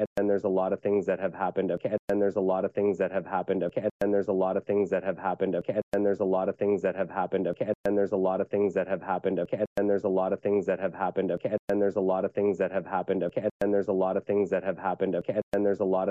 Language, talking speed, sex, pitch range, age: English, 315 wpm, male, 95-100 Hz, 20-39